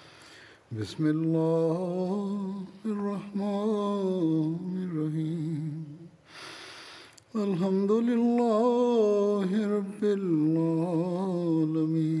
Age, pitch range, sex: 60-79, 160-195 Hz, male